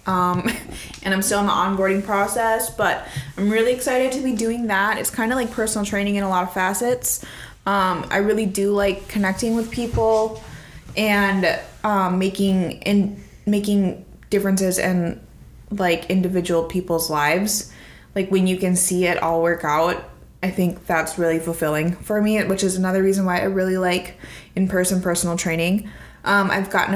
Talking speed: 170 wpm